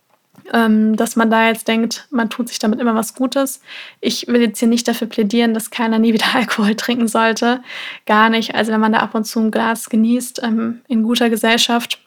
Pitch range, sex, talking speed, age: 225-245 Hz, female, 205 wpm, 20-39